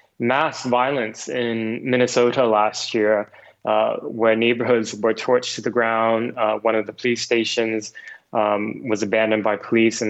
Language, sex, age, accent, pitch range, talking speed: English, male, 20-39, American, 110-125 Hz, 155 wpm